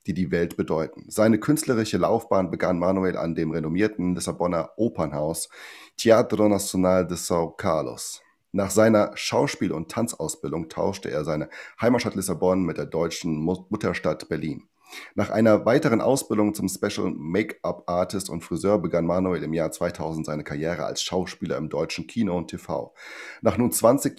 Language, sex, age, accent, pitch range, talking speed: German, male, 30-49, German, 85-110 Hz, 150 wpm